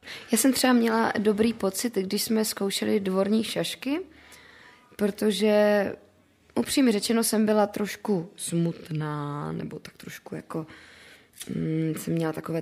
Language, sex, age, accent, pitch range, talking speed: Czech, female, 20-39, native, 170-210 Hz, 125 wpm